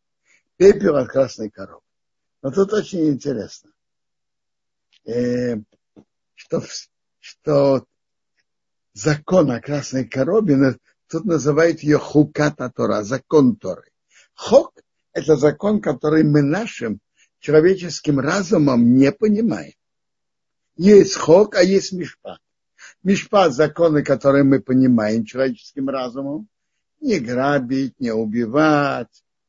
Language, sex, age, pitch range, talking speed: Russian, male, 60-79, 130-170 Hz, 100 wpm